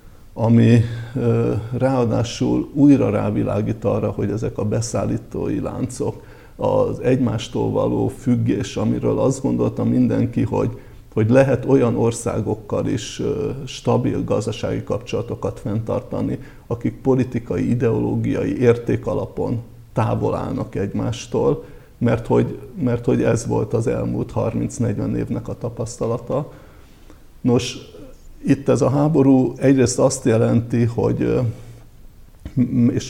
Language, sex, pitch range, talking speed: Hungarian, male, 110-130 Hz, 105 wpm